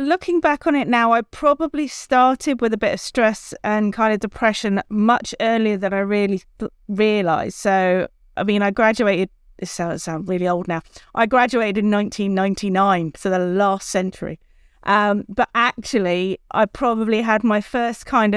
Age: 30-49